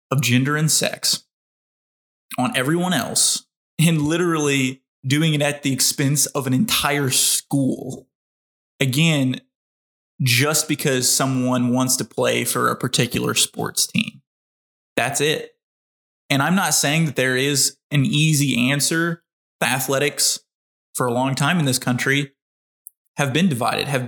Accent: American